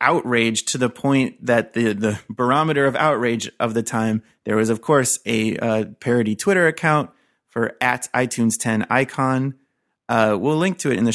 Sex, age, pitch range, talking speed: male, 30-49, 115-130 Hz, 185 wpm